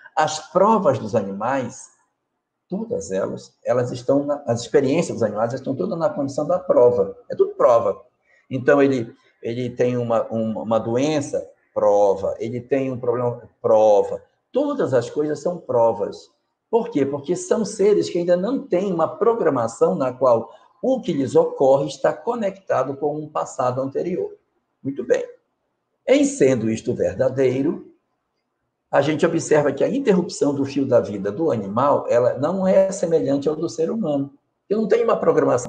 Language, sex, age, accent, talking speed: Portuguese, male, 60-79, Brazilian, 160 wpm